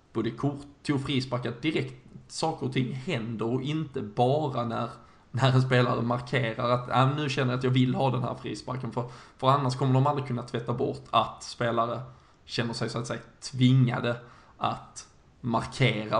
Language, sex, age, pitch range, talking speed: Swedish, male, 20-39, 120-130 Hz, 175 wpm